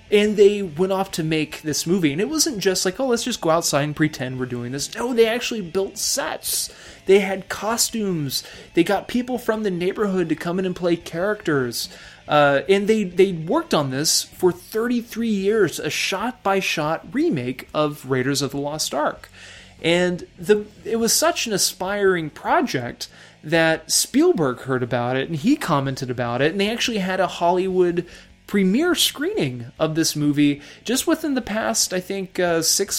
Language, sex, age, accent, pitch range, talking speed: English, male, 20-39, American, 145-205 Hz, 180 wpm